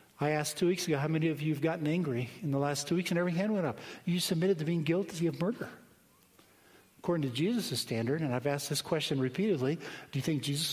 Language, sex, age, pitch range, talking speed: English, male, 50-69, 130-175 Hz, 240 wpm